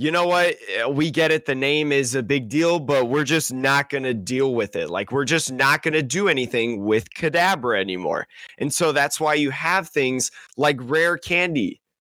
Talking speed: 210 wpm